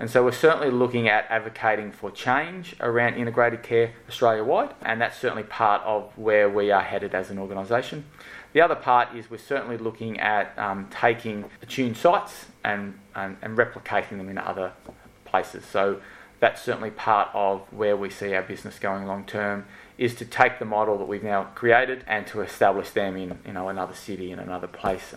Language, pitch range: English, 100-120 Hz